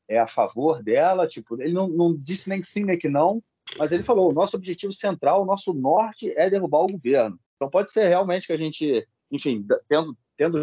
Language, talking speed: Portuguese, 220 wpm